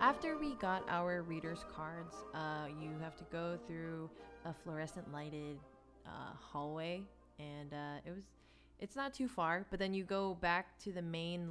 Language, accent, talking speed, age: English, American, 170 wpm, 20-39